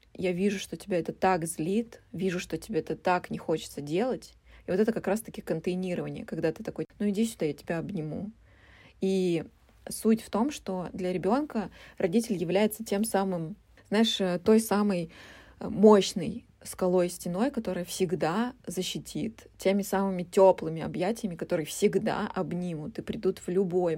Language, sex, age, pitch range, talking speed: Russian, female, 20-39, 175-215 Hz, 155 wpm